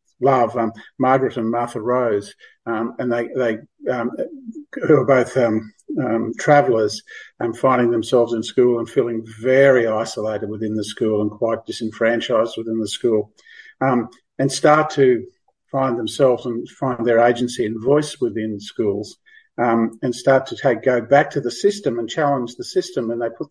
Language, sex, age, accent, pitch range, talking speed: English, male, 50-69, Australian, 115-135 Hz, 170 wpm